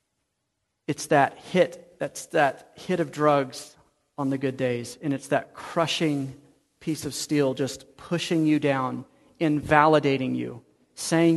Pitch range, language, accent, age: 140-175 Hz, English, American, 40-59